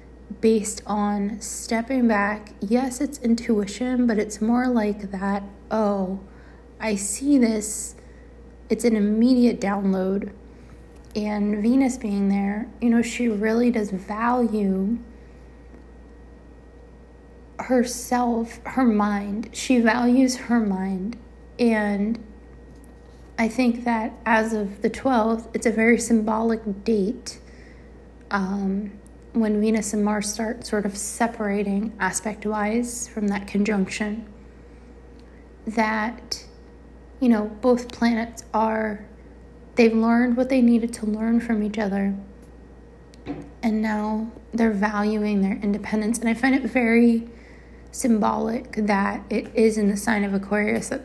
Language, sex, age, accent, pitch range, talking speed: English, female, 30-49, American, 205-235 Hz, 120 wpm